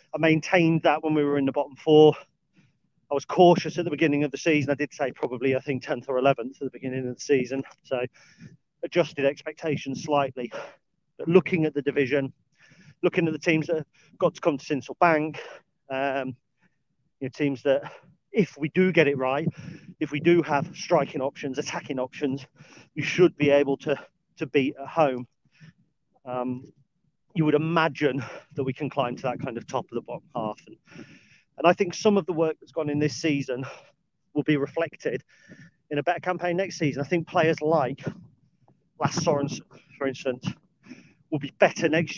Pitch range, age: 140-165 Hz, 40-59